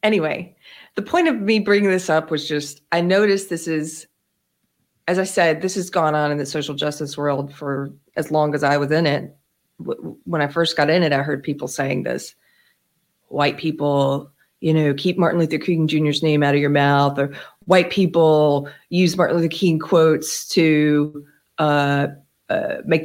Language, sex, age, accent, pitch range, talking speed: English, female, 40-59, American, 150-185 Hz, 185 wpm